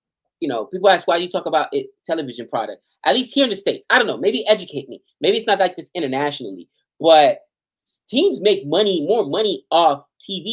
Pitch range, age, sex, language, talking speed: 145-220 Hz, 20-39, male, English, 210 wpm